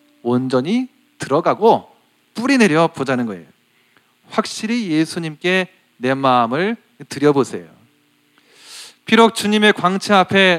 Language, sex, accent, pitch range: Korean, male, native, 140-205 Hz